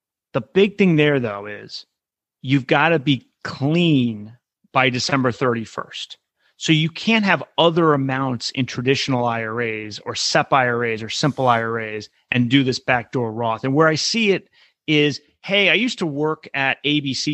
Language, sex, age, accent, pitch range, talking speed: English, male, 30-49, American, 120-150 Hz, 165 wpm